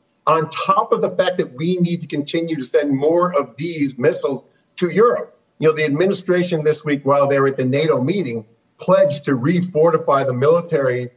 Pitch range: 135-180 Hz